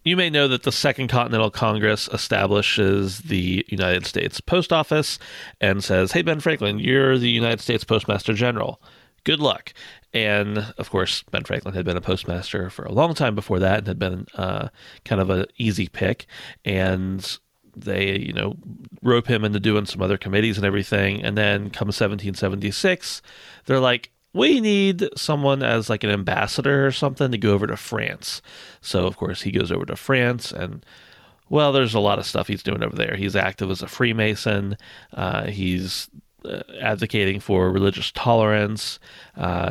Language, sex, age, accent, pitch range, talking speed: English, male, 30-49, American, 95-120 Hz, 175 wpm